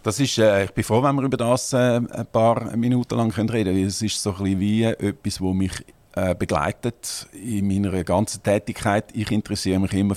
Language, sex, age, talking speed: German, male, 50-69, 220 wpm